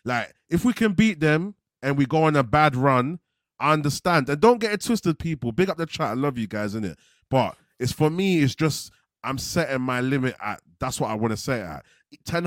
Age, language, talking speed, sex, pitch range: 30-49, English, 240 wpm, male, 115-155 Hz